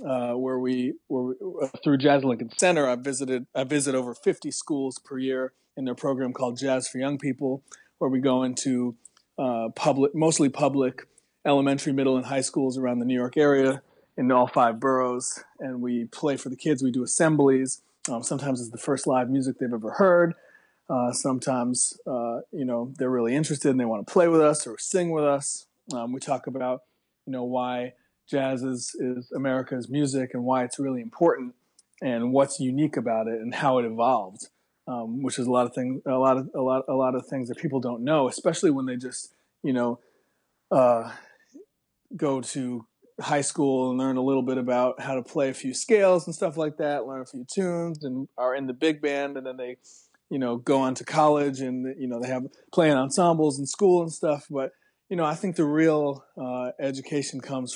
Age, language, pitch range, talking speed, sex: 30-49, English, 125-145 Hz, 205 wpm, male